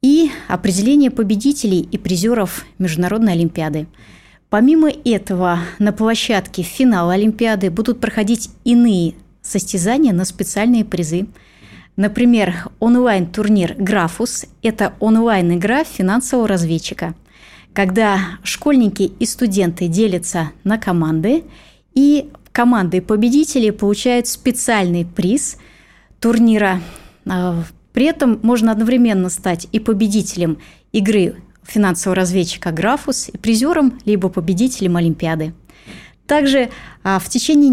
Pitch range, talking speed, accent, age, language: 185-235 Hz, 95 wpm, native, 20-39, Russian